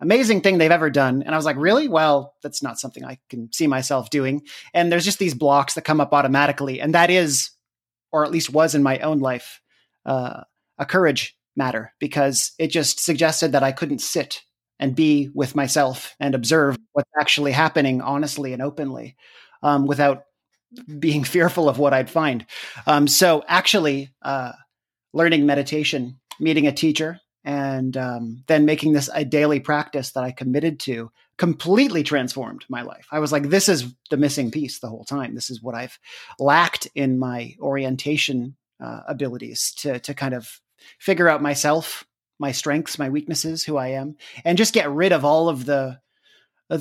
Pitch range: 135-155 Hz